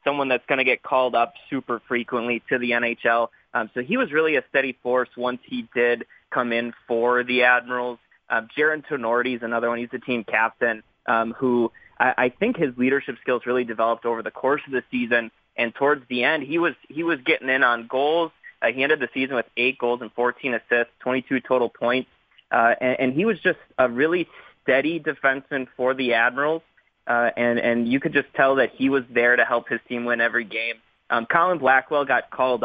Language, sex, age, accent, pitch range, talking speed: English, male, 20-39, American, 120-135 Hz, 215 wpm